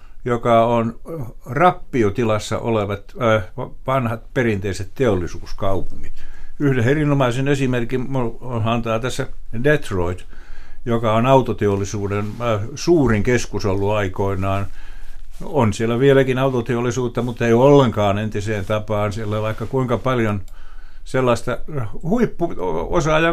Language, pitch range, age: Finnish, 105-130 Hz, 60-79